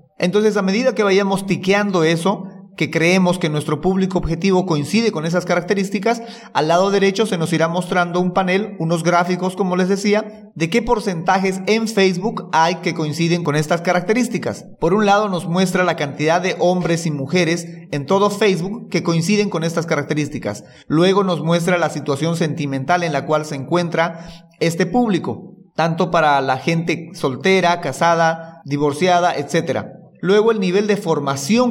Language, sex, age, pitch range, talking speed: Spanish, male, 30-49, 160-195 Hz, 165 wpm